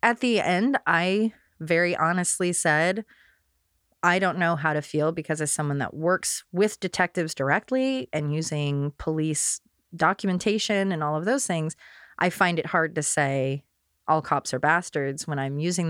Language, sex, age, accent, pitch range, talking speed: English, female, 30-49, American, 150-185 Hz, 160 wpm